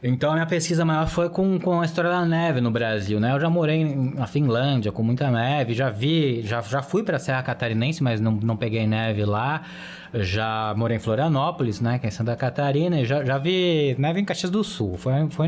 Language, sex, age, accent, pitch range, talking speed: Portuguese, male, 20-39, Brazilian, 115-160 Hz, 220 wpm